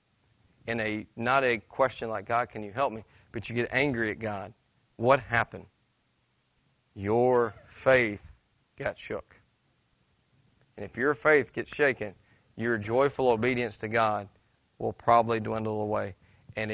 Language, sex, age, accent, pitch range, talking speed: English, male, 40-59, American, 110-130 Hz, 140 wpm